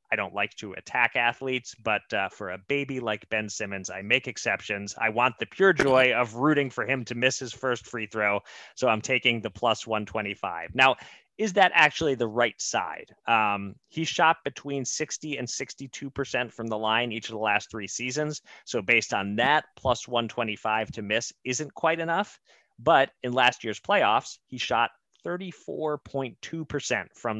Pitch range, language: 110-145 Hz, English